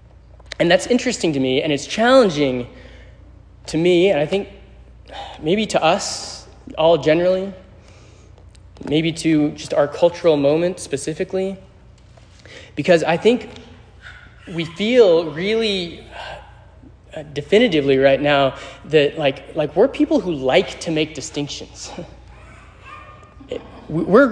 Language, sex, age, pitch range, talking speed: English, male, 20-39, 135-200 Hz, 110 wpm